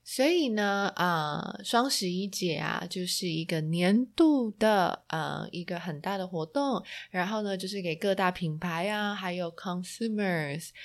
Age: 20-39